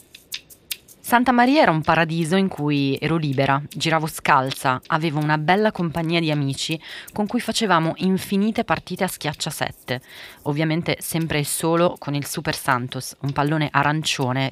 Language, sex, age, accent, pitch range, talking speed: Italian, female, 30-49, native, 145-200 Hz, 150 wpm